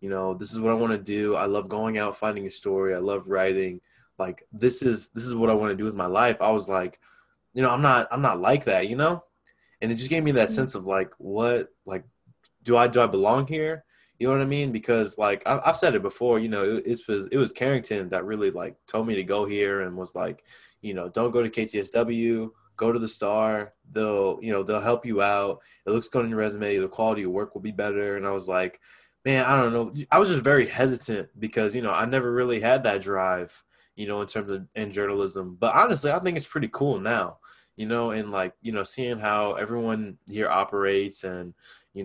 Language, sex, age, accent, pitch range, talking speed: English, male, 20-39, American, 100-120 Hz, 250 wpm